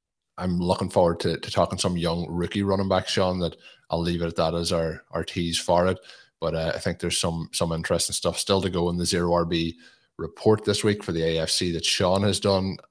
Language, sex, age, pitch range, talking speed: English, male, 20-39, 85-95 Hz, 230 wpm